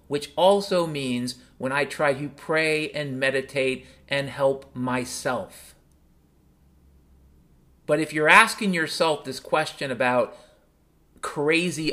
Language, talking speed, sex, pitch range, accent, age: English, 110 wpm, male, 130-170 Hz, American, 40-59